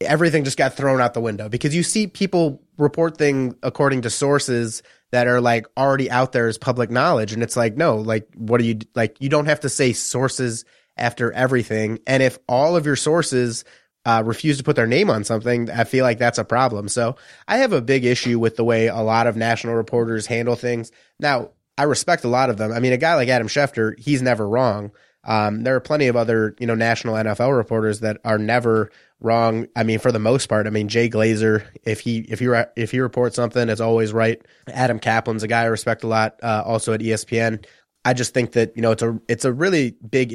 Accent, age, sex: American, 20-39, male